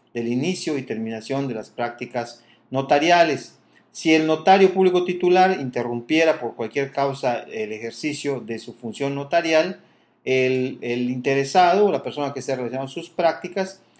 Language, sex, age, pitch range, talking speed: English, male, 40-59, 120-155 Hz, 145 wpm